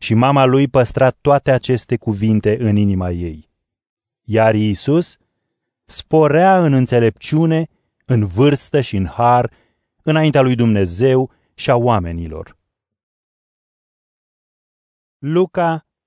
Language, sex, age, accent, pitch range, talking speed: Romanian, male, 30-49, native, 115-150 Hz, 100 wpm